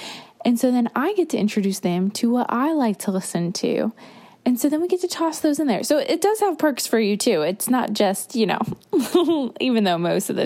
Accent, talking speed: American, 245 wpm